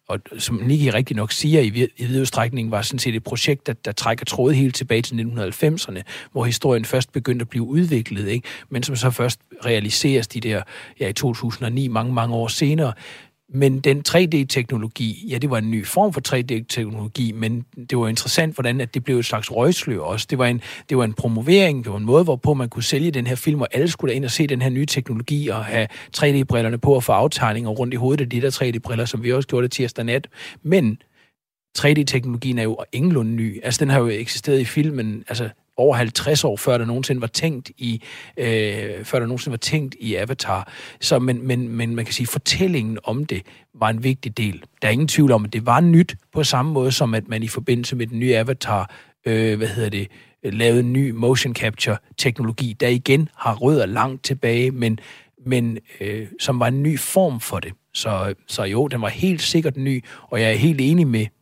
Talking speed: 210 wpm